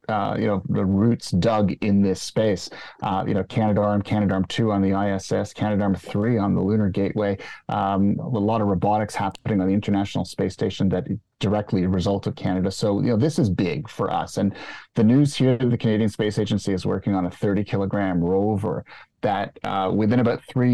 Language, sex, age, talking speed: English, male, 30-49, 205 wpm